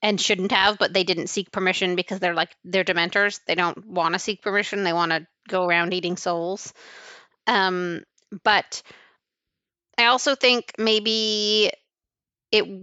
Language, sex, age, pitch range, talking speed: English, female, 30-49, 180-225 Hz, 155 wpm